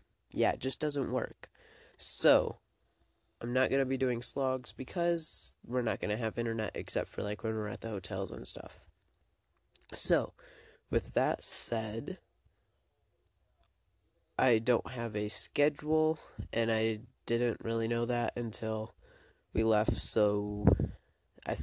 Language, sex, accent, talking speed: English, male, American, 140 wpm